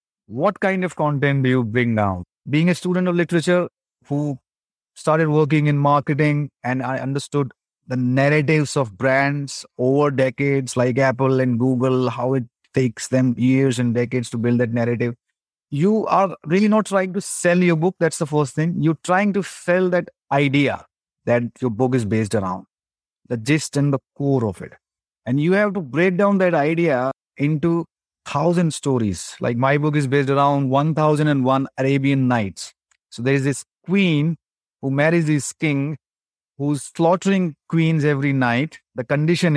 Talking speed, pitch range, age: 165 wpm, 130-160 Hz, 30-49